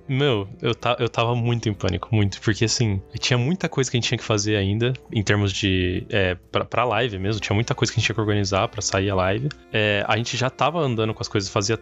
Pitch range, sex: 110-145 Hz, male